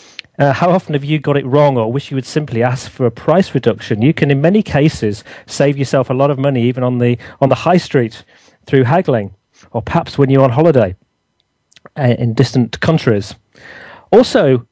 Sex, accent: male, British